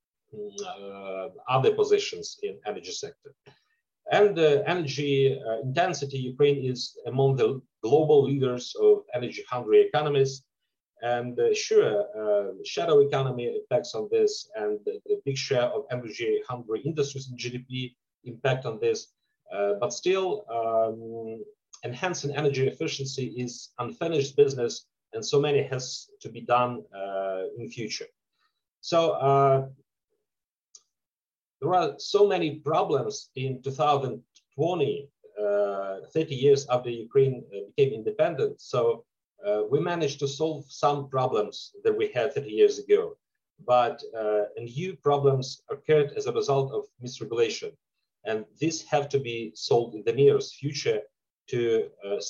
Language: English